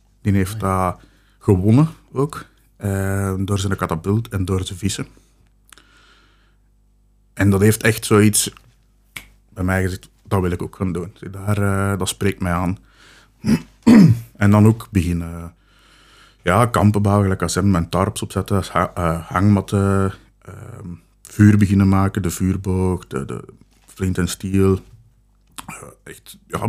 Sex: male